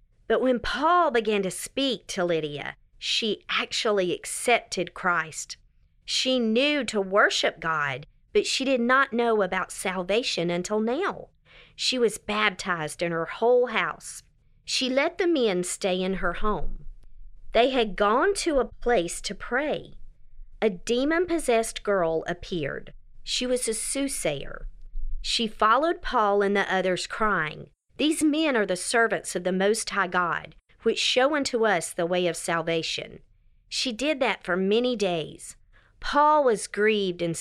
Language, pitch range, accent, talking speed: English, 180-245 Hz, American, 150 wpm